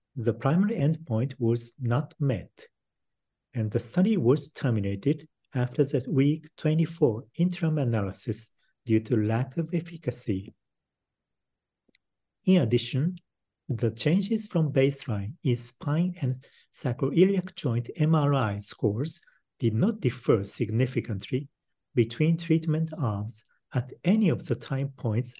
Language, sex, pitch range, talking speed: English, male, 115-155 Hz, 115 wpm